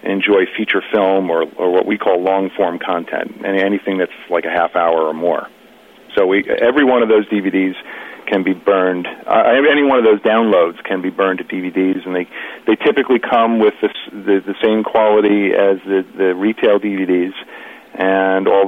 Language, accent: English, American